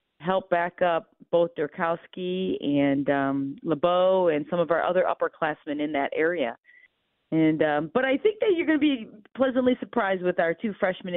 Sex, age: female, 40-59